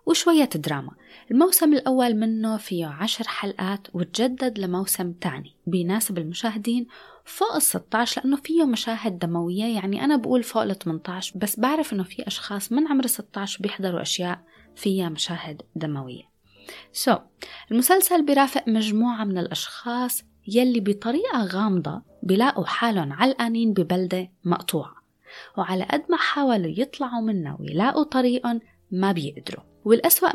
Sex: female